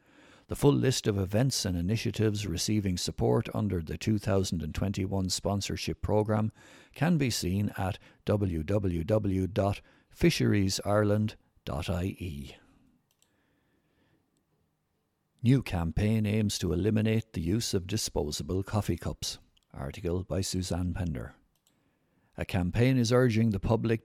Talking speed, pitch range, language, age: 100 wpm, 95-115 Hz, English, 60-79